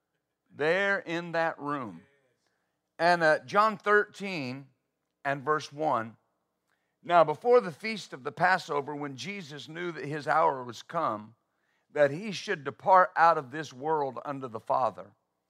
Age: 50-69